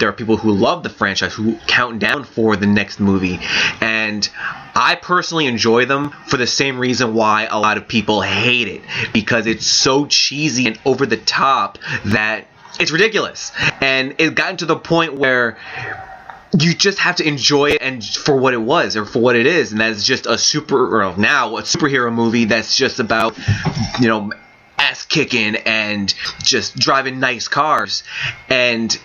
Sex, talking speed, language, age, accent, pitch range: male, 180 wpm, English, 20-39, American, 110-145 Hz